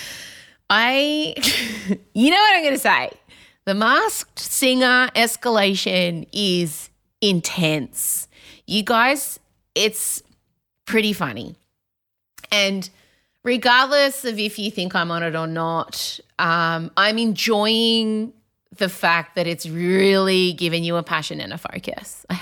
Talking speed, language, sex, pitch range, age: 125 wpm, English, female, 180-295 Hz, 30-49